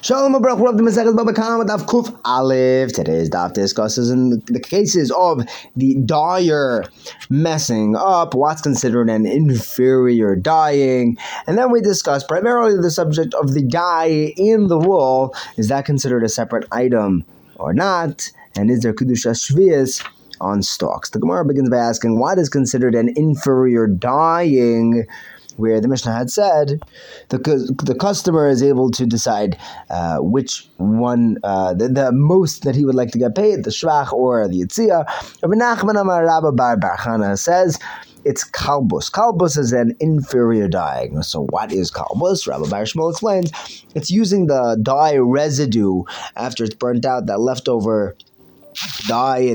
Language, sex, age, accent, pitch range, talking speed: English, male, 20-39, American, 115-165 Hz, 150 wpm